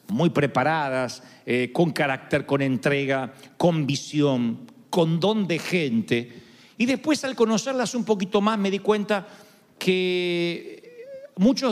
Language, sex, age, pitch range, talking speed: Spanish, male, 50-69, 160-220 Hz, 130 wpm